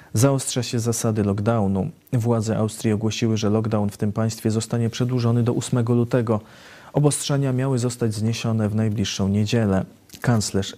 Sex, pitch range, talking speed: male, 105-125 Hz, 140 wpm